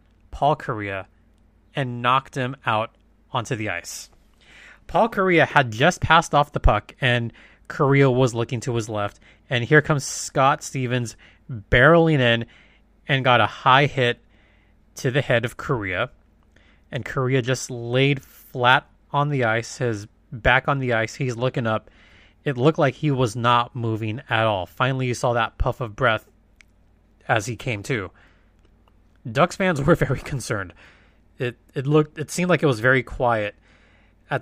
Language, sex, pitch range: English, male, 105-140 Hz